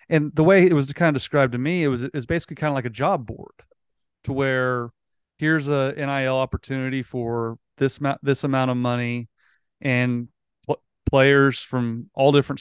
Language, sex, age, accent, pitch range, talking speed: English, male, 30-49, American, 130-160 Hz, 180 wpm